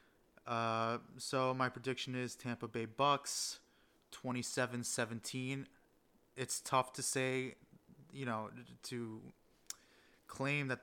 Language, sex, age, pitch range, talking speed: English, male, 20-39, 125-140 Hz, 100 wpm